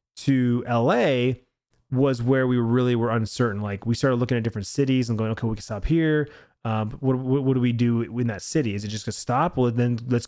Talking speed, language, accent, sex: 240 wpm, English, American, male